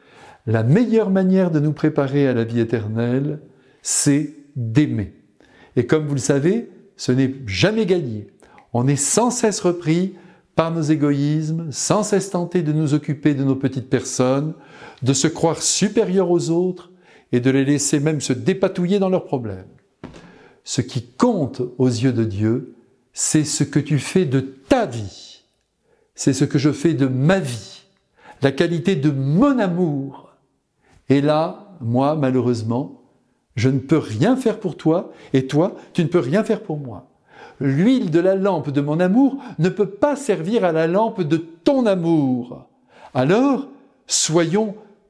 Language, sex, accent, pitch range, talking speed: French, male, French, 125-185 Hz, 160 wpm